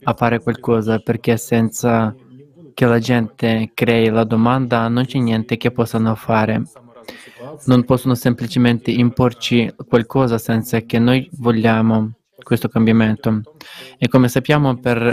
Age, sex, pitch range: 20-39, male, 115-125 Hz